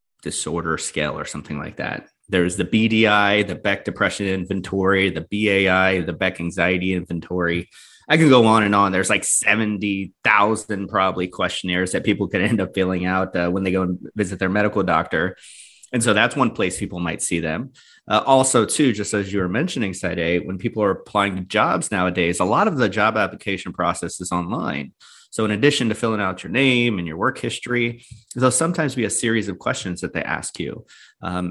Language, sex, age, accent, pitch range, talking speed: English, male, 30-49, American, 95-120 Hz, 200 wpm